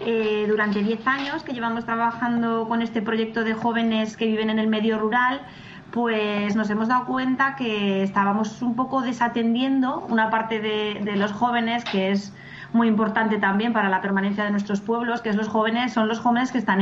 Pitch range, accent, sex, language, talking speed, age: 195-235 Hz, Spanish, female, Spanish, 195 wpm, 20-39